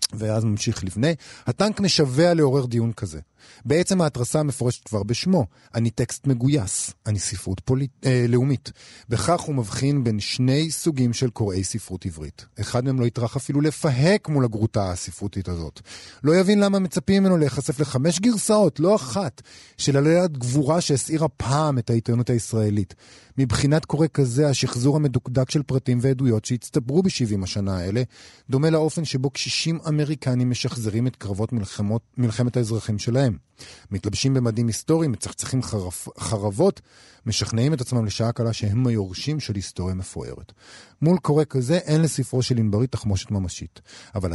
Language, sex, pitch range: Hebrew, male, 110-145 Hz